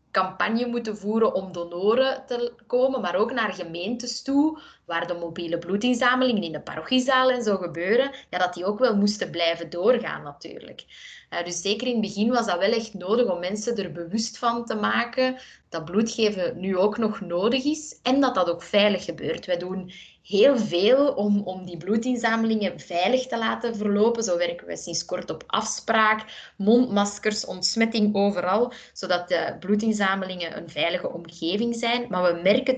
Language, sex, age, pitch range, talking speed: Dutch, female, 20-39, 185-240 Hz, 170 wpm